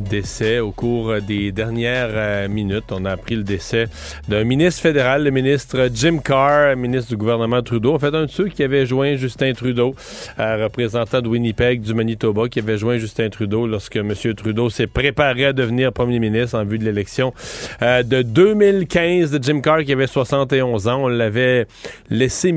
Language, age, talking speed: French, 40-59, 185 wpm